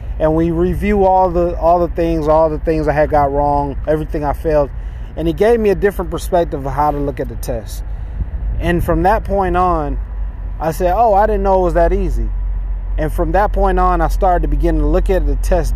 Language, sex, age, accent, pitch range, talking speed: English, male, 20-39, American, 140-170 Hz, 230 wpm